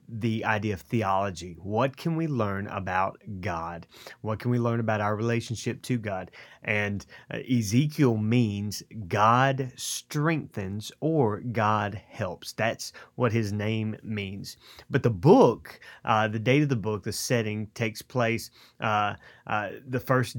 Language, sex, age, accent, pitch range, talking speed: English, male, 30-49, American, 105-125 Hz, 145 wpm